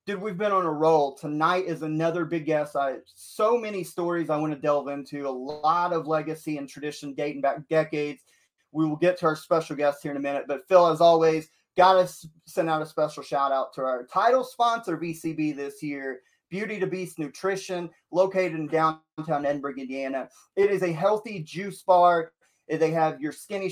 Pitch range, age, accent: 145-185 Hz, 30-49, American